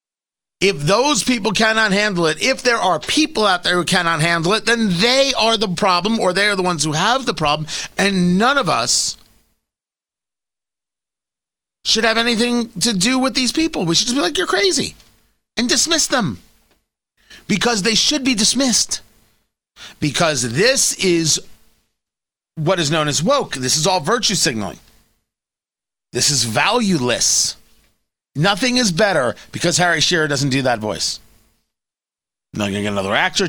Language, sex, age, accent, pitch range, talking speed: English, male, 40-59, American, 155-230 Hz, 160 wpm